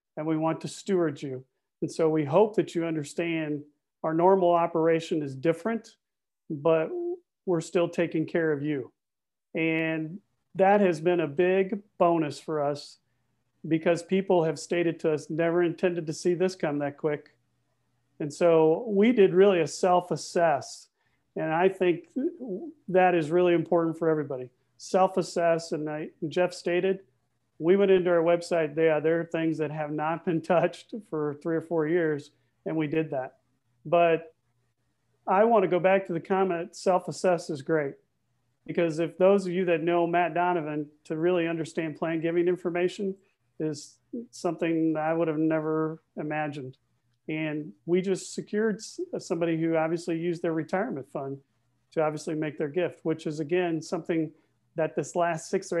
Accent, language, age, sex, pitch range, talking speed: American, English, 40-59, male, 155-180 Hz, 160 wpm